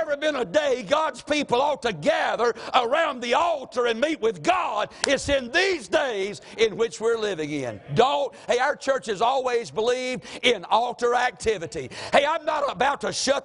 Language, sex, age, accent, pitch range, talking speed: English, male, 60-79, American, 180-275 Hz, 180 wpm